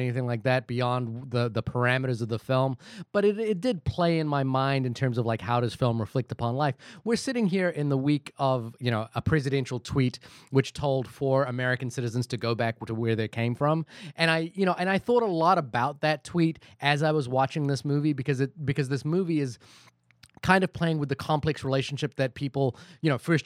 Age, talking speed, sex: 30-49, 230 wpm, male